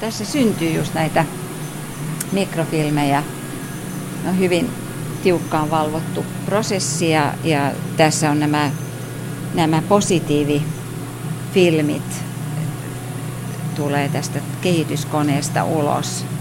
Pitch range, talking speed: 140-160 Hz, 75 wpm